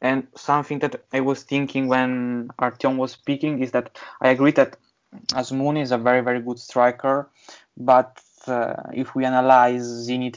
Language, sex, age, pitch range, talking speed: English, male, 20-39, 120-130 Hz, 160 wpm